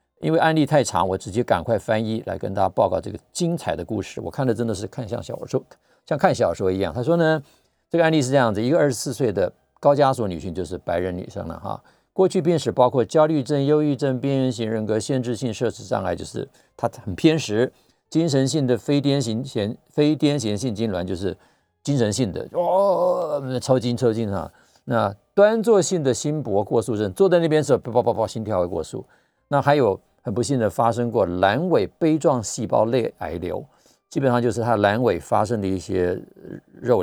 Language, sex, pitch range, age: Chinese, male, 105-145 Hz, 50-69